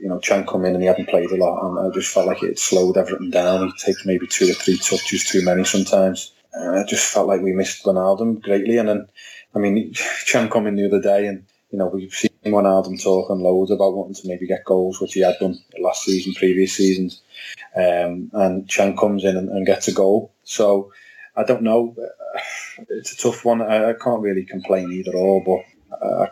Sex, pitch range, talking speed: male, 95-100 Hz, 225 wpm